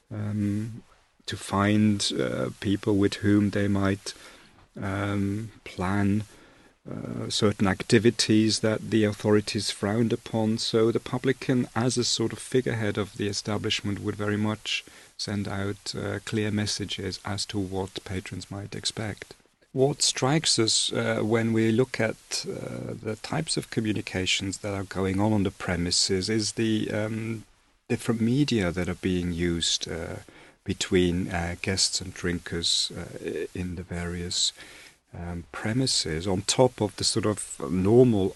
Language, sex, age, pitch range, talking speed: English, male, 40-59, 90-110 Hz, 145 wpm